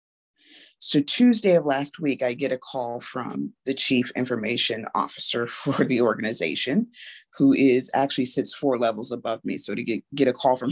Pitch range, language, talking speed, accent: 135-230 Hz, English, 180 wpm, American